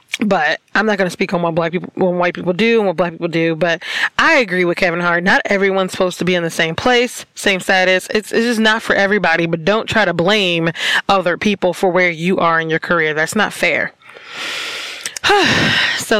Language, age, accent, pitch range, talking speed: English, 20-39, American, 175-200 Hz, 220 wpm